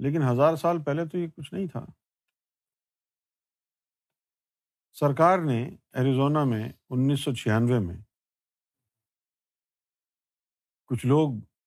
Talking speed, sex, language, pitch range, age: 95 wpm, male, Urdu, 110-145 Hz, 50-69